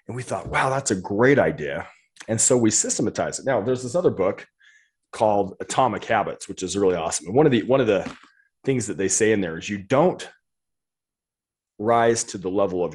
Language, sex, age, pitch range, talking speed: English, male, 30-49, 100-140 Hz, 205 wpm